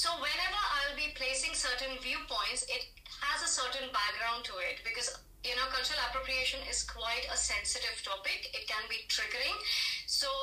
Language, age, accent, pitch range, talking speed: English, 30-49, Indian, 235-270 Hz, 165 wpm